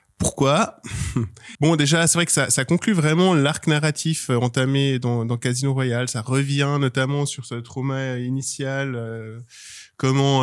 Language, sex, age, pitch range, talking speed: French, male, 20-39, 120-145 Hz, 150 wpm